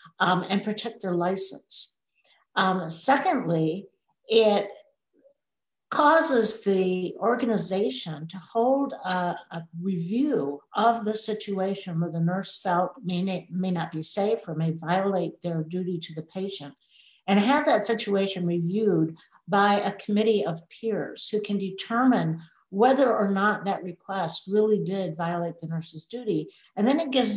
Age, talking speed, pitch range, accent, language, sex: 60-79, 140 wpm, 170-210 Hz, American, English, female